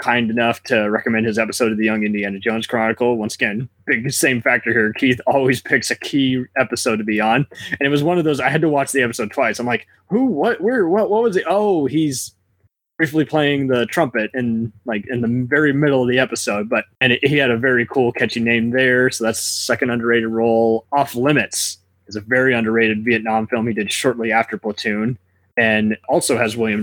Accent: American